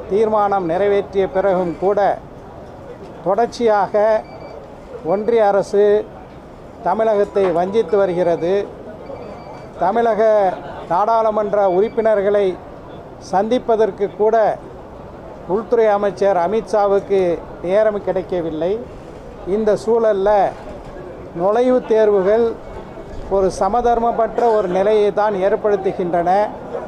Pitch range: 190-215 Hz